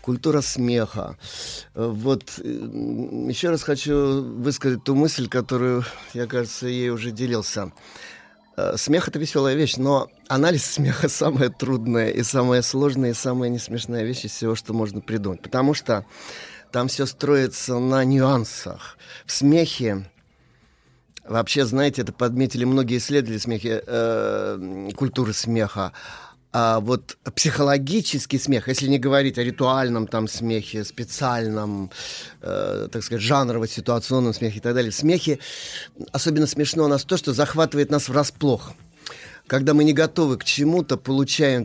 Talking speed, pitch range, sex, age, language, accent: 130 wpm, 115-140 Hz, male, 30-49, Russian, native